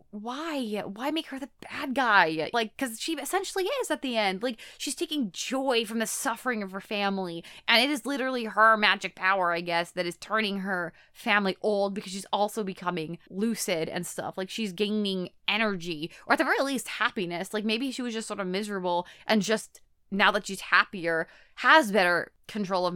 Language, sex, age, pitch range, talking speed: English, female, 20-39, 180-225 Hz, 195 wpm